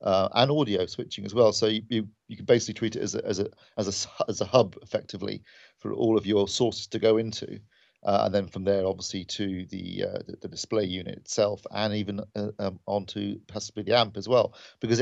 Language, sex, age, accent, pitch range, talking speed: English, male, 40-59, British, 100-115 Hz, 230 wpm